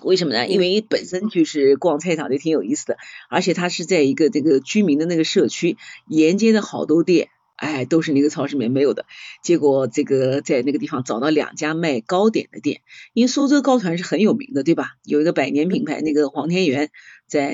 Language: Chinese